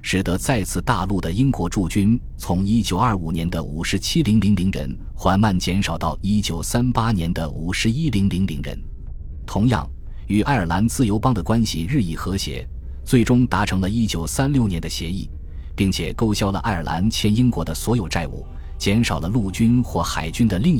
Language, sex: Chinese, male